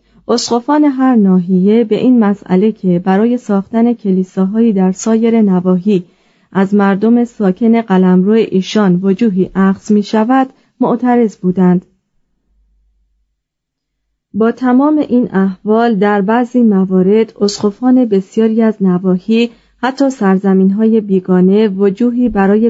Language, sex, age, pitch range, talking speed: Persian, female, 30-49, 190-230 Hz, 110 wpm